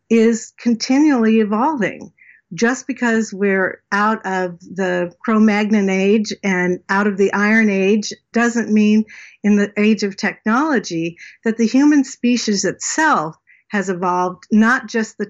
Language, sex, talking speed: English, female, 135 wpm